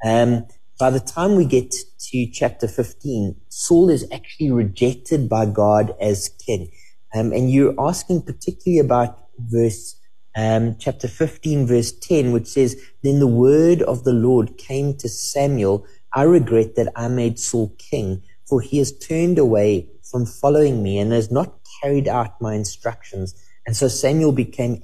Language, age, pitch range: English, 30-49, 110-145 Hz